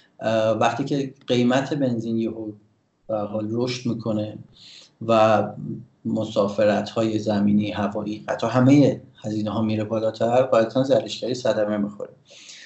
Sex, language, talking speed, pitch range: male, Persian, 100 wpm, 110-130 Hz